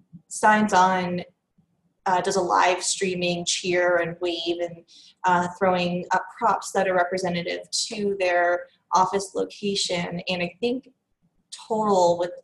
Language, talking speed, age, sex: English, 130 wpm, 20-39, female